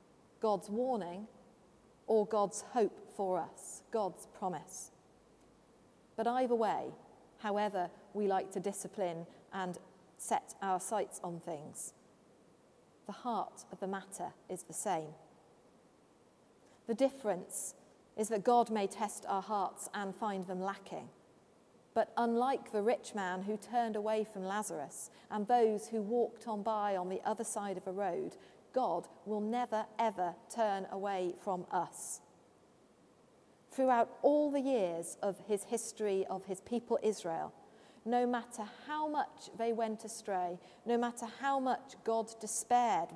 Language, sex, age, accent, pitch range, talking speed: English, female, 40-59, British, 190-235 Hz, 140 wpm